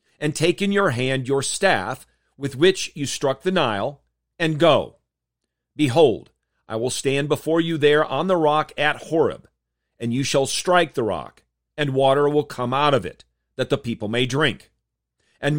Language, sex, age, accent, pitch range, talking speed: English, male, 40-59, American, 115-165 Hz, 175 wpm